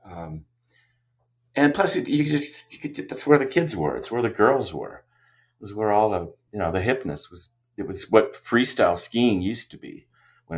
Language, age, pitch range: English, 40-59, 80-120 Hz